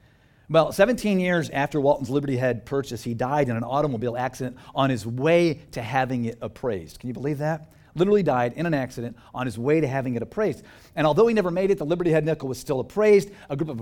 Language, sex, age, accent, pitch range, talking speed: English, male, 50-69, American, 120-165 Hz, 230 wpm